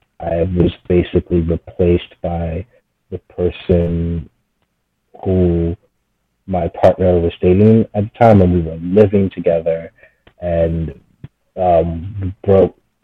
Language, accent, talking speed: English, American, 105 wpm